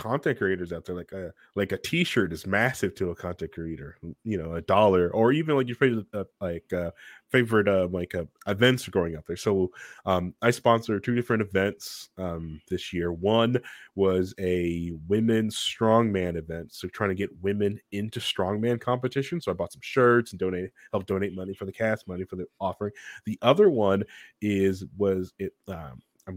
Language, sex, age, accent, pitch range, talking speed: English, male, 20-39, American, 90-115 Hz, 190 wpm